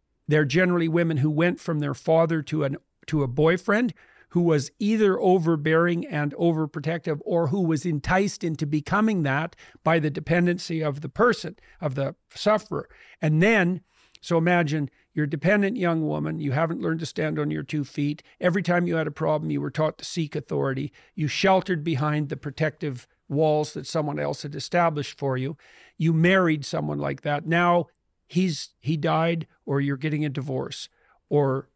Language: English